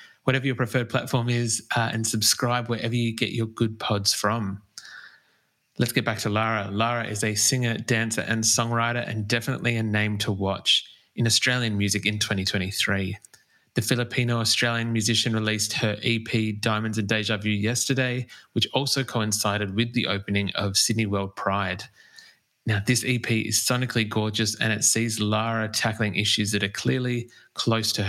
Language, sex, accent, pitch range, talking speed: English, male, Australian, 105-115 Hz, 160 wpm